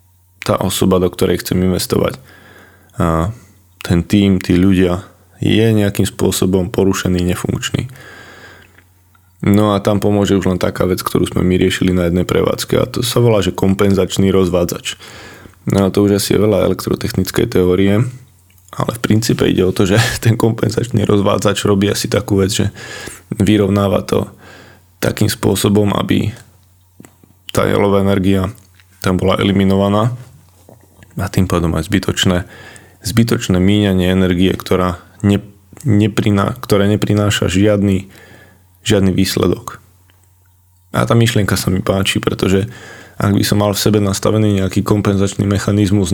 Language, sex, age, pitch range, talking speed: Slovak, male, 20-39, 95-105 Hz, 135 wpm